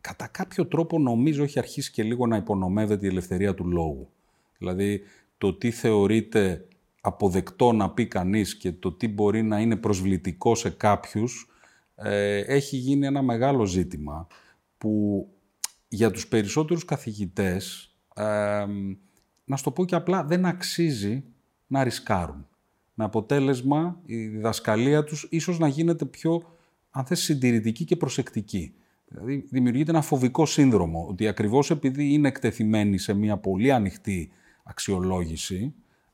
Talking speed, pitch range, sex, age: 130 wpm, 100-150 Hz, male, 40-59